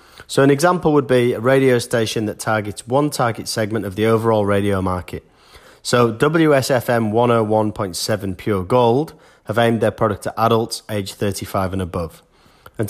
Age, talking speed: 30-49, 160 wpm